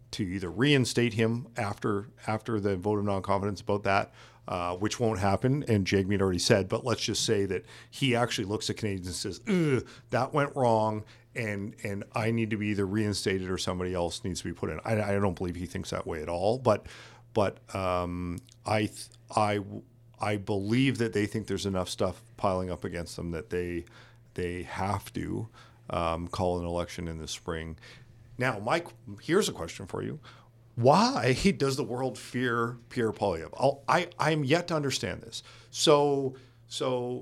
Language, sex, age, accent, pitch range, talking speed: English, male, 50-69, American, 100-120 Hz, 185 wpm